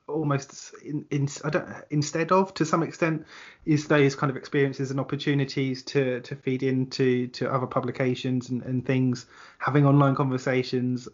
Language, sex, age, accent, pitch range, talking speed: English, male, 20-39, British, 130-145 Hz, 160 wpm